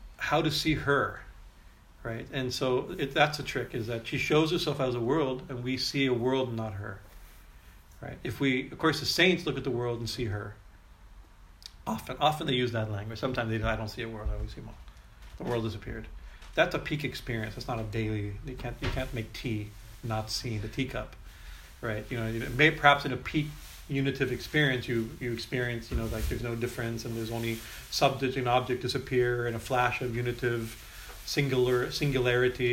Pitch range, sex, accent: 110-130 Hz, male, American